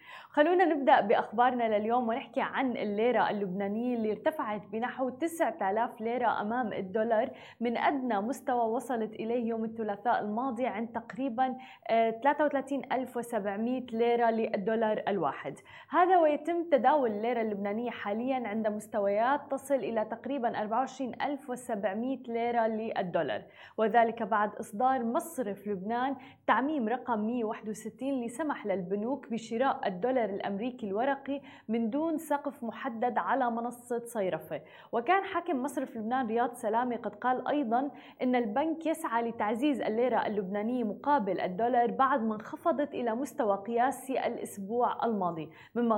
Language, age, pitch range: Arabic, 20-39, 220-265 Hz